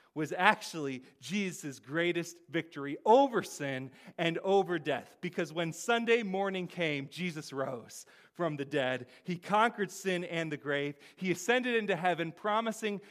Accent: American